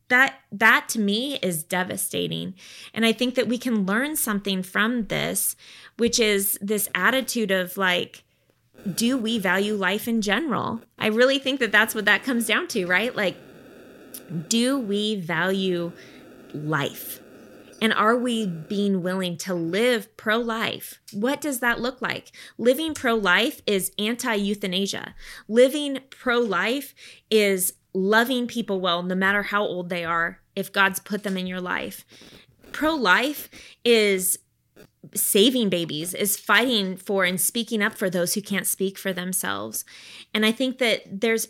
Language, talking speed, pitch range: English, 145 wpm, 190-230 Hz